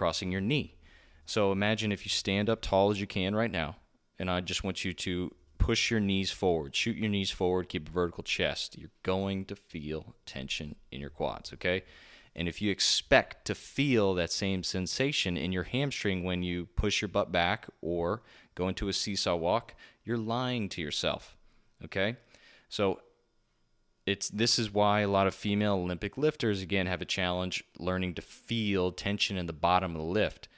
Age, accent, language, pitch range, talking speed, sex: 30-49, American, English, 85-100 Hz, 190 wpm, male